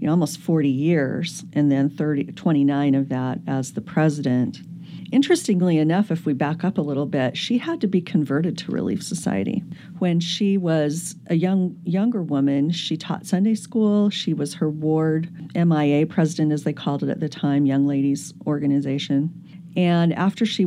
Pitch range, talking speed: 155-195 Hz, 175 wpm